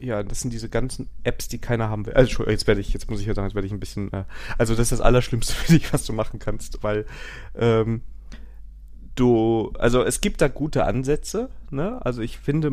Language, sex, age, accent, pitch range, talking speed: German, male, 30-49, German, 105-130 Hz, 230 wpm